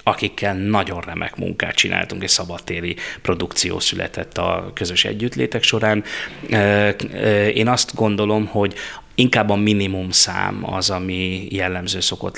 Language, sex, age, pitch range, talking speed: Hungarian, male, 30-49, 95-105 Hz, 115 wpm